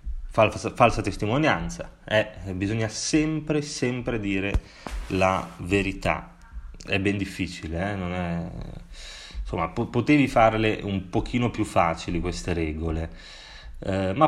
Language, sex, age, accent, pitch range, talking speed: Italian, male, 30-49, native, 85-110 Hz, 120 wpm